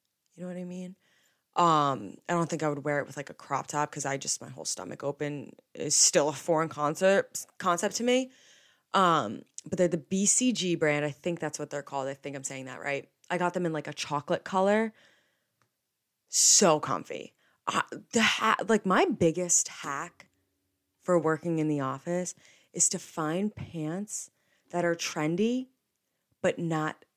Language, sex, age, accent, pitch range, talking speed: English, female, 20-39, American, 150-185 Hz, 180 wpm